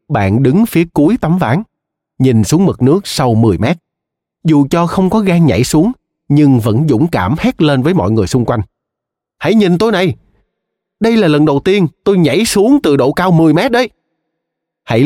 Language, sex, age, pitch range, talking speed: Vietnamese, male, 20-39, 110-160 Hz, 200 wpm